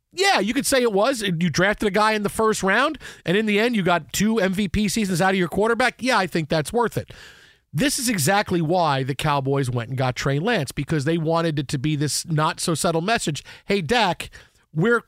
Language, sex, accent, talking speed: English, male, American, 225 wpm